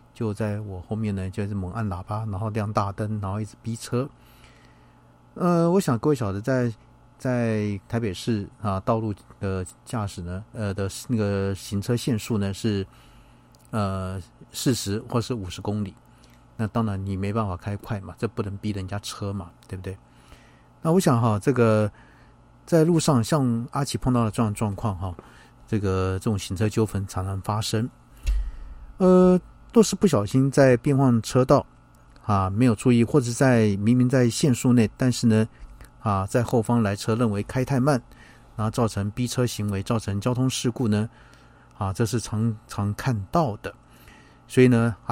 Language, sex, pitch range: Chinese, male, 100-125 Hz